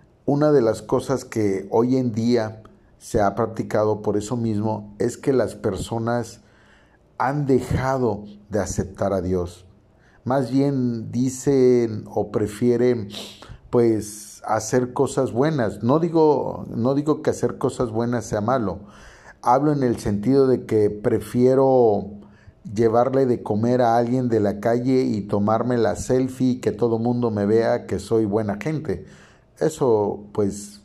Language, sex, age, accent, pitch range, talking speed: Spanish, male, 50-69, Mexican, 105-125 Hz, 140 wpm